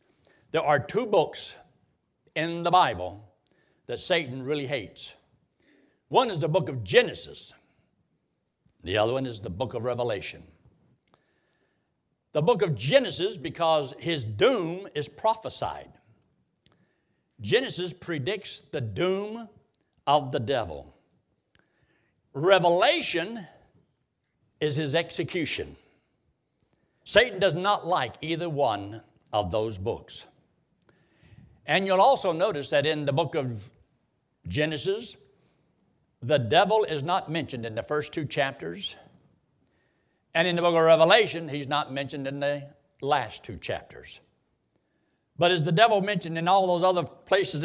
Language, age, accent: English, 60-79, American